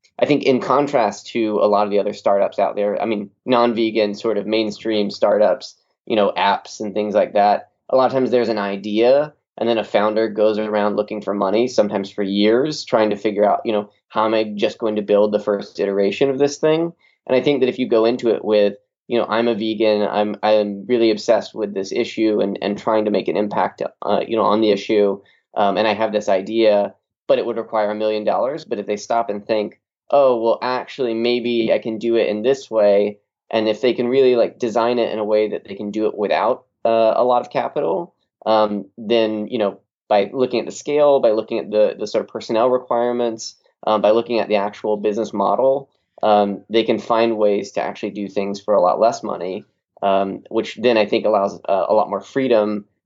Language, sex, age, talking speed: English, male, 20-39, 230 wpm